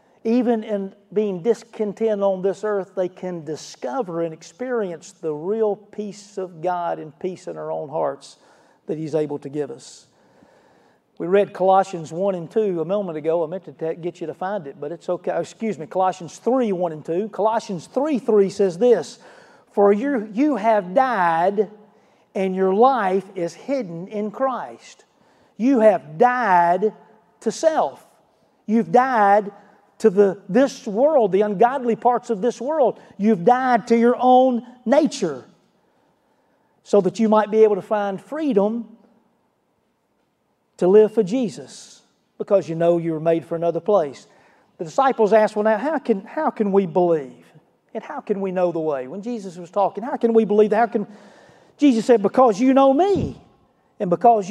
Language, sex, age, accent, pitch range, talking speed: English, male, 40-59, American, 185-235 Hz, 170 wpm